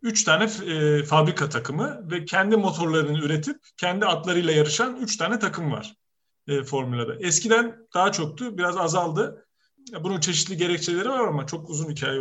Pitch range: 145-180 Hz